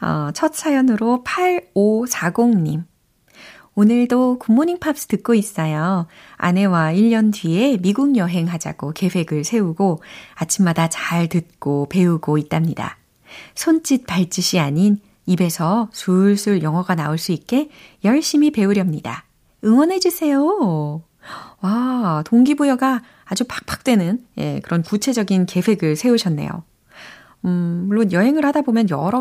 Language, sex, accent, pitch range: Korean, female, native, 165-235 Hz